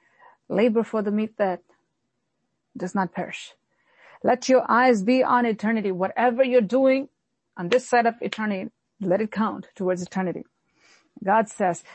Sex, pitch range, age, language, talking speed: female, 200-275 Hz, 40-59, English, 145 wpm